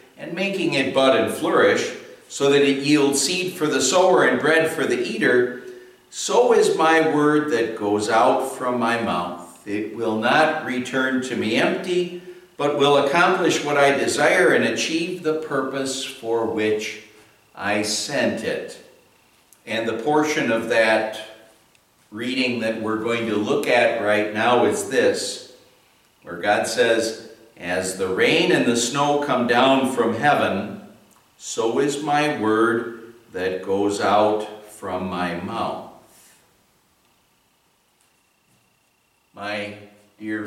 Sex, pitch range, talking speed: male, 105-140 Hz, 135 wpm